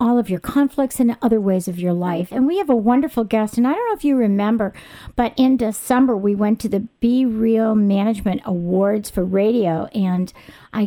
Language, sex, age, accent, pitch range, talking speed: English, female, 50-69, American, 205-255 Hz, 210 wpm